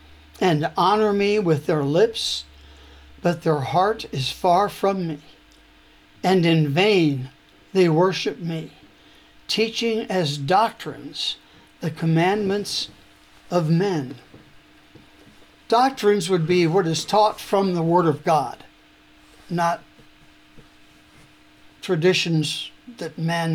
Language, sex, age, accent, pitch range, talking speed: English, male, 60-79, American, 150-200 Hz, 105 wpm